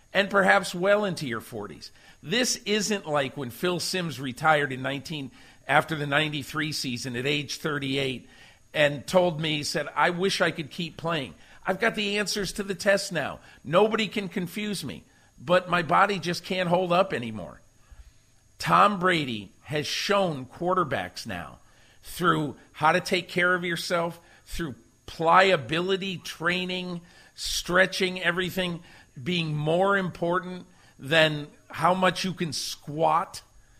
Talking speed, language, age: 140 wpm, English, 50-69